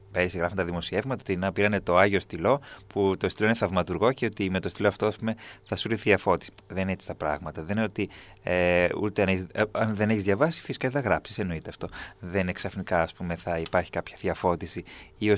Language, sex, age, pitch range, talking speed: Greek, male, 20-39, 90-110 Hz, 235 wpm